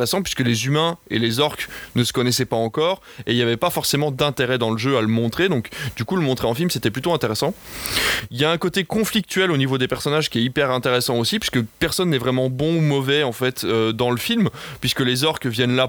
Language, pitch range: French, 120-150 Hz